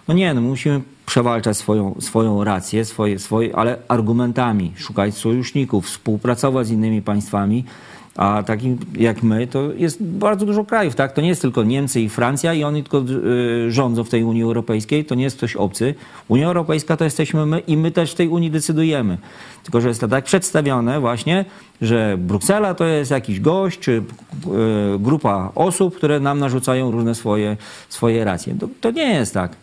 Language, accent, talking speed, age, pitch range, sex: Polish, native, 180 wpm, 40-59, 115-150 Hz, male